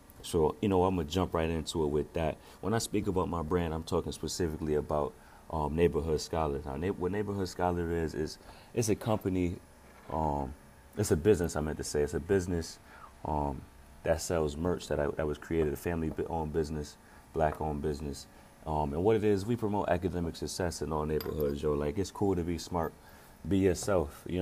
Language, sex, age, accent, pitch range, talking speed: English, male, 30-49, American, 75-90 Hz, 200 wpm